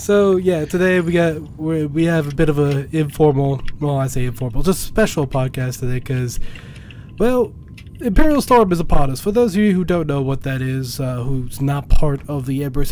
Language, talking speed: English, 210 wpm